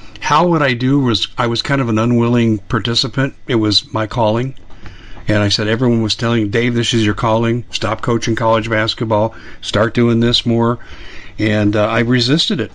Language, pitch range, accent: English, 110-140 Hz, American